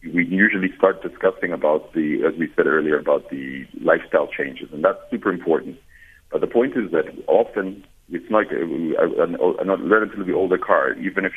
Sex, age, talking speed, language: male, 50-69, 175 wpm, English